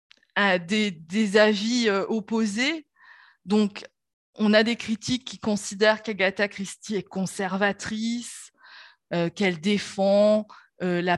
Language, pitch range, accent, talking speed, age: French, 190-220 Hz, French, 105 wpm, 20-39